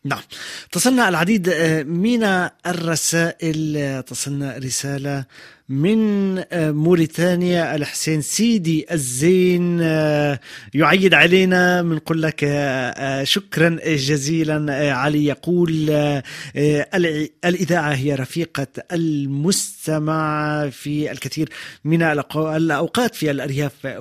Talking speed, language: 75 wpm, Arabic